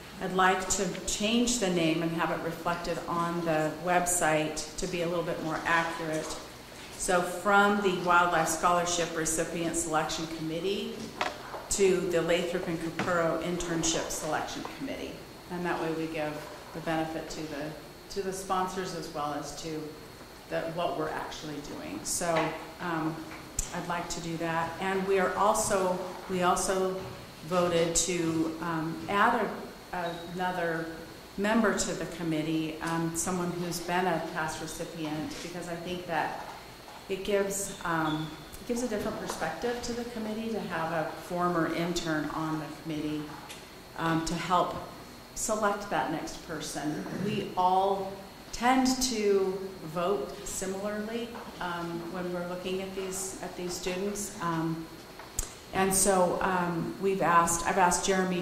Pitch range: 165-190 Hz